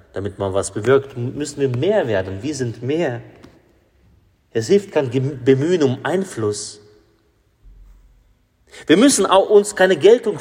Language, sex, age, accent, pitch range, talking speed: German, male, 30-49, German, 100-135 Hz, 140 wpm